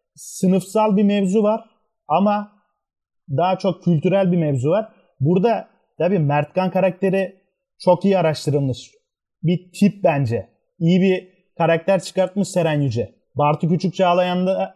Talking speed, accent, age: 120 wpm, native, 30-49